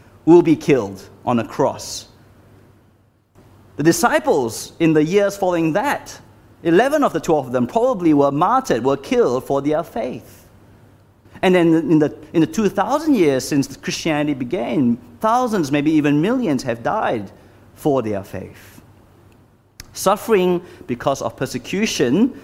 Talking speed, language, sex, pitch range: 140 wpm, English, male, 115-185 Hz